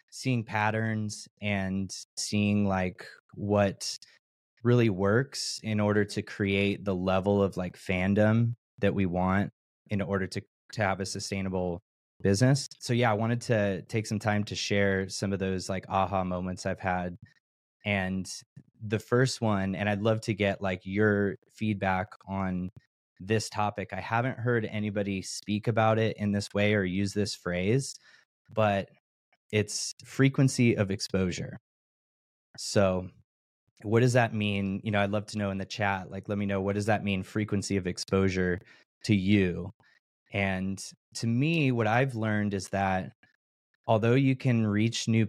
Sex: male